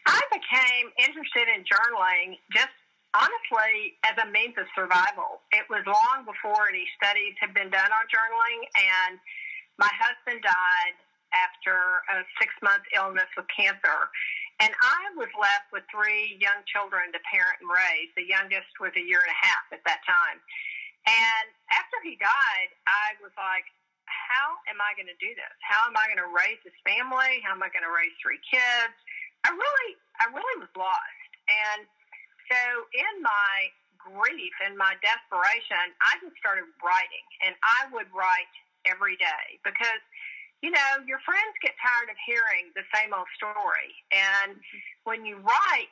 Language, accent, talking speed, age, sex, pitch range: English, American, 165 wpm, 50-69, female, 195-295 Hz